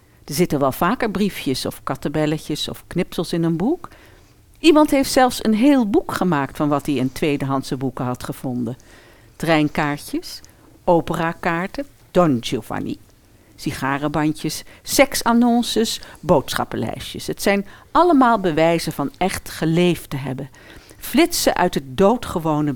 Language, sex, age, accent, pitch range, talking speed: Dutch, female, 60-79, Dutch, 135-220 Hz, 125 wpm